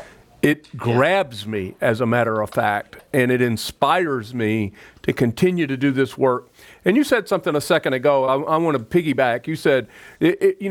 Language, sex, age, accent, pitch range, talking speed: English, male, 40-59, American, 140-220 Hz, 185 wpm